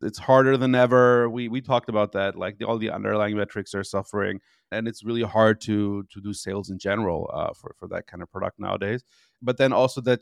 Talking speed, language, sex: 230 wpm, English, male